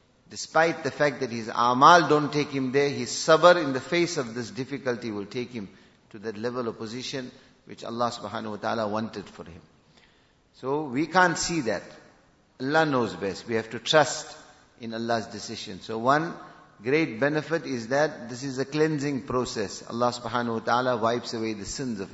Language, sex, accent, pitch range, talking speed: English, male, Indian, 115-155 Hz, 185 wpm